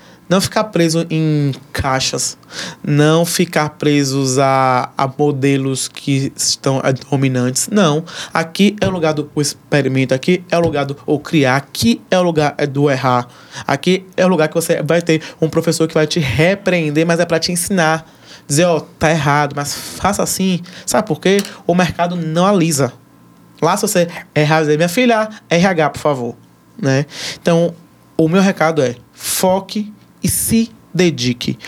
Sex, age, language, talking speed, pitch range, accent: male, 20-39, Portuguese, 165 wpm, 145-185 Hz, Brazilian